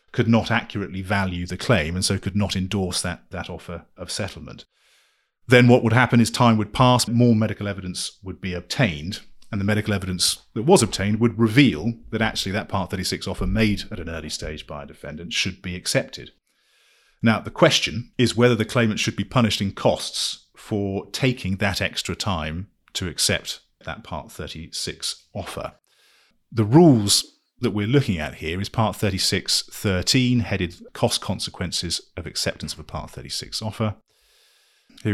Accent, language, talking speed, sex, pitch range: British, English, 170 wpm, male, 90-115 Hz